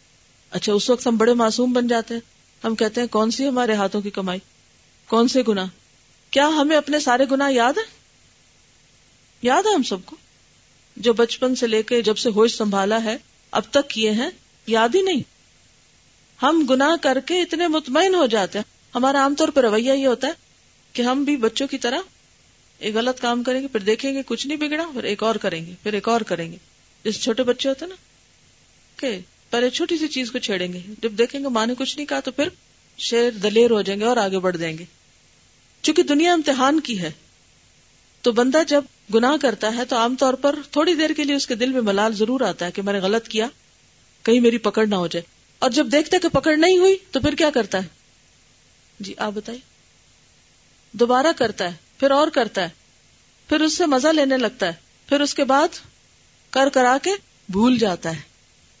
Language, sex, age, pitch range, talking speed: Urdu, female, 40-59, 220-285 Hz, 185 wpm